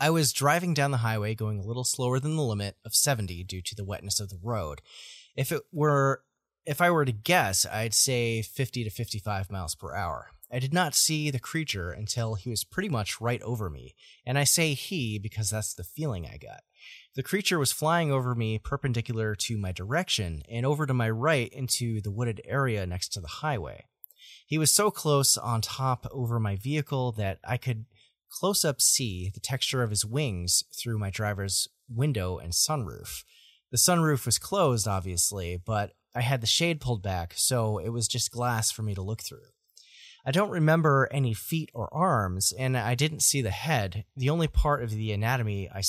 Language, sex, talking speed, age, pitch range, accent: English, male, 200 wpm, 30-49, 105-140 Hz, American